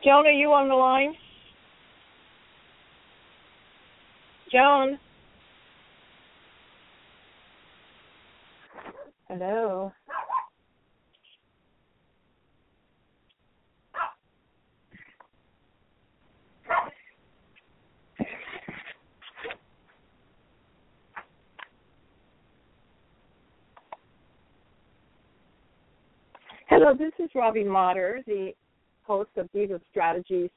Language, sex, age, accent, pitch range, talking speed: English, female, 50-69, American, 195-250 Hz, 35 wpm